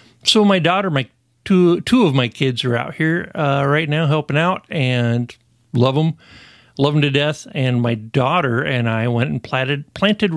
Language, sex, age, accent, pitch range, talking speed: English, male, 50-69, American, 120-160 Hz, 190 wpm